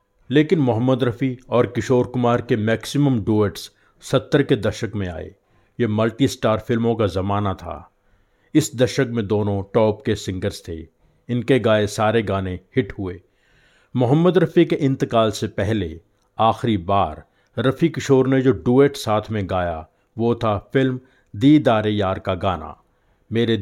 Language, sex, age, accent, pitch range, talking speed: Hindi, male, 50-69, native, 100-125 Hz, 150 wpm